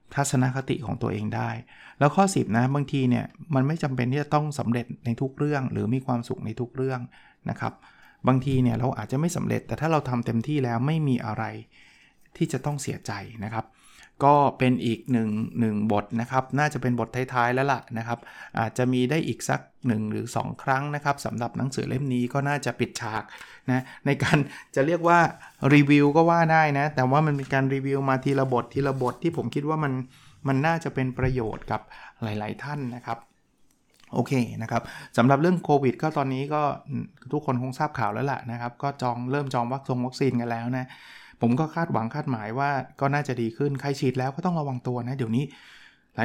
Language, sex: Thai, male